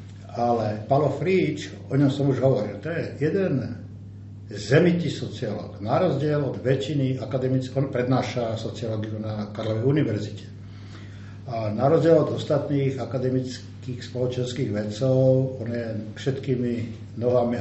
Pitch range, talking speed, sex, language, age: 100-130 Hz, 125 wpm, male, Slovak, 60-79